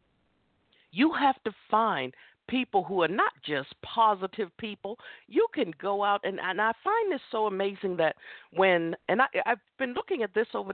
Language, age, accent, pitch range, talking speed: English, 50-69, American, 175-250 Hz, 175 wpm